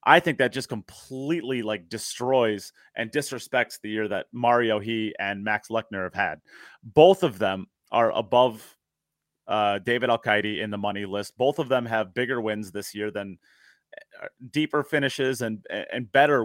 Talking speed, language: 170 wpm, English